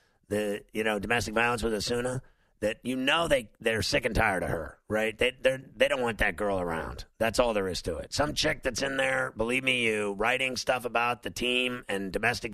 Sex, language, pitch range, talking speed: male, English, 105-125 Hz, 225 wpm